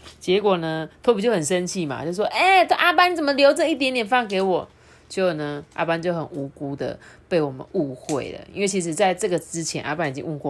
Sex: female